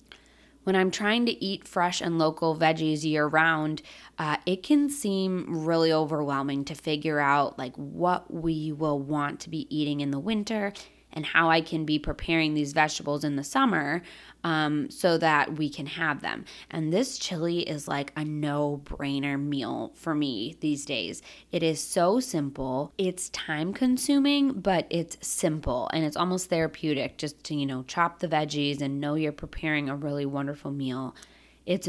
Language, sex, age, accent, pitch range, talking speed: English, female, 20-39, American, 145-180 Hz, 170 wpm